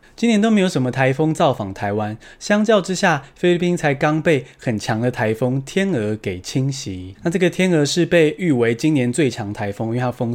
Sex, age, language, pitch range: male, 20-39, Chinese, 120-175 Hz